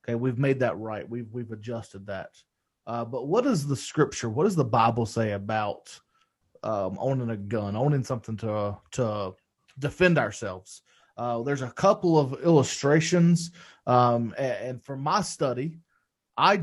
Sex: male